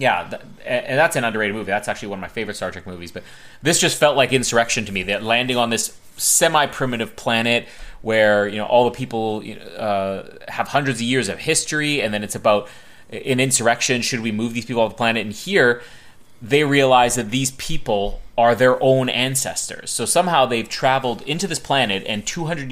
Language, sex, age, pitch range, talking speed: English, male, 30-49, 105-140 Hz, 205 wpm